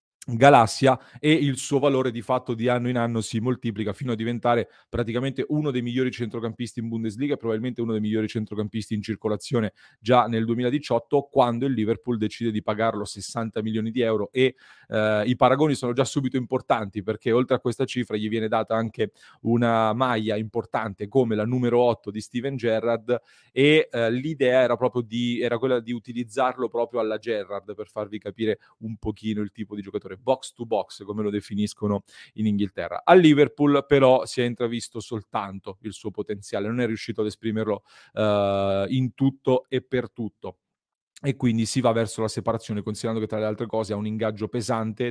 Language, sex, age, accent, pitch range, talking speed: Italian, male, 30-49, native, 110-125 Hz, 185 wpm